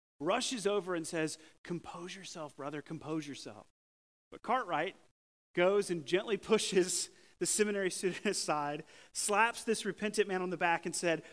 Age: 40-59